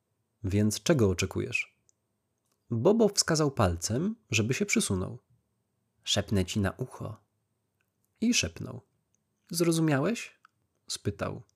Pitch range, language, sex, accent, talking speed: 105-145 Hz, Polish, male, native, 90 wpm